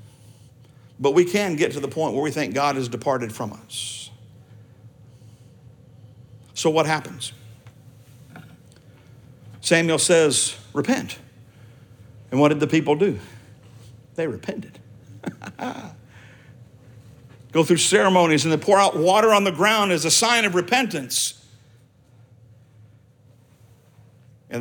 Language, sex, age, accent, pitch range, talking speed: English, male, 50-69, American, 115-145 Hz, 110 wpm